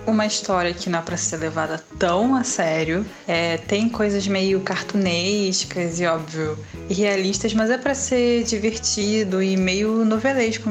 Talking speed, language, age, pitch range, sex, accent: 155 wpm, Portuguese, 10-29, 180-215 Hz, female, Brazilian